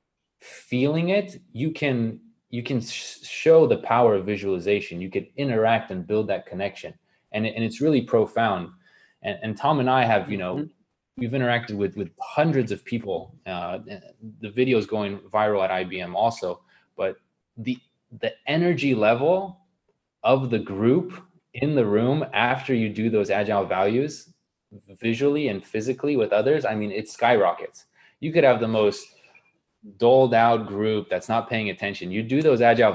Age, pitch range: 20-39, 105-140 Hz